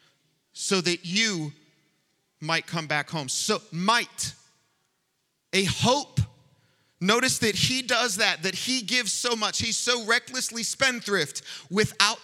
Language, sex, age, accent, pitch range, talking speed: English, male, 30-49, American, 155-195 Hz, 125 wpm